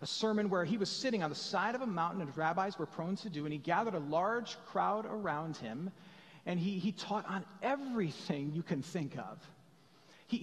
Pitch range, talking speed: 165-220 Hz, 215 wpm